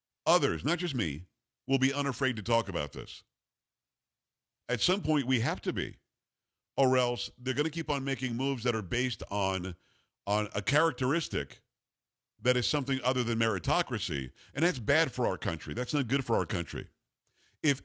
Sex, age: male, 50-69